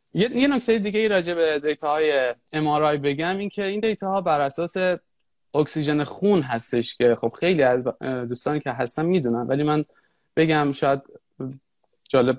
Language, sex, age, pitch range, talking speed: Persian, male, 20-39, 130-170 Hz, 145 wpm